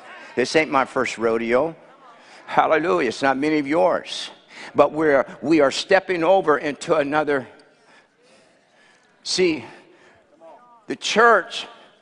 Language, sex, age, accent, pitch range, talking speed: English, male, 60-79, American, 160-225 Hz, 110 wpm